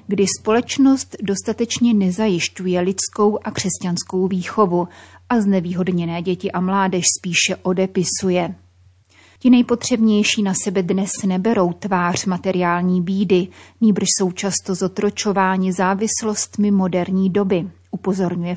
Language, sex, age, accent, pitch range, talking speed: Czech, female, 30-49, native, 180-205 Hz, 105 wpm